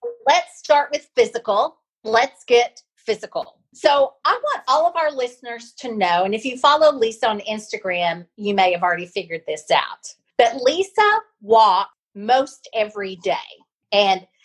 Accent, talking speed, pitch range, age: American, 155 wpm, 195-270 Hz, 40-59